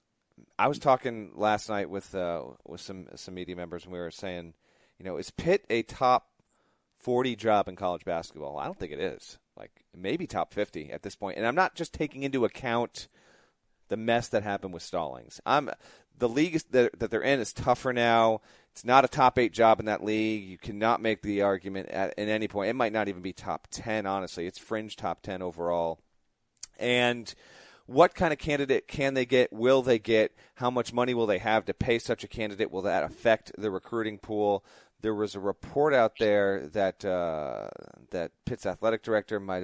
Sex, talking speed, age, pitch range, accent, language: male, 205 wpm, 40-59, 95-120 Hz, American, English